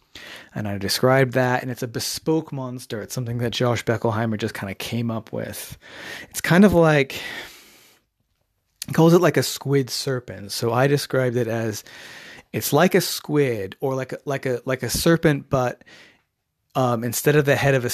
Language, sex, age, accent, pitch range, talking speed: English, male, 30-49, American, 110-135 Hz, 185 wpm